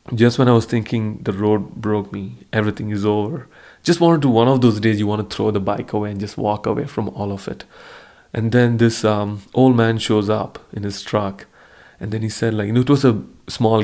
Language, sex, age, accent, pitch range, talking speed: English, male, 30-49, Indian, 105-115 Hz, 245 wpm